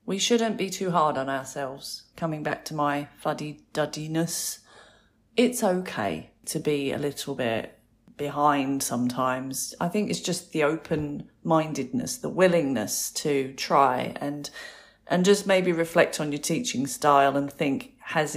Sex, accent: female, British